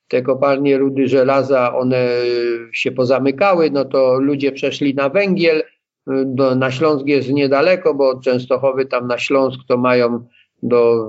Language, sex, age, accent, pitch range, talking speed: Polish, male, 50-69, native, 125-150 Hz, 145 wpm